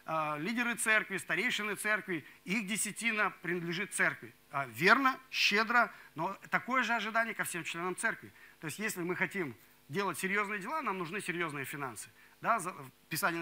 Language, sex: Russian, male